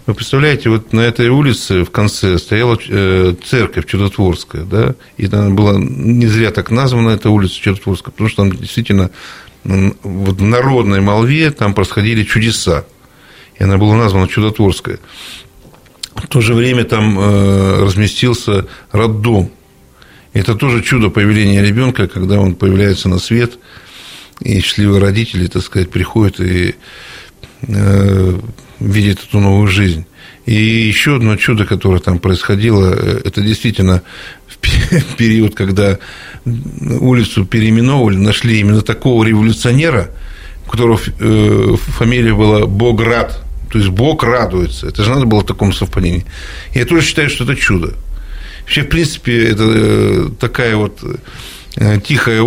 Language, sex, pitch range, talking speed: Russian, male, 95-120 Hz, 130 wpm